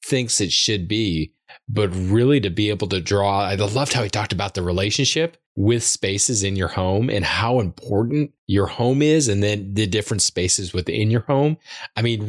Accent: American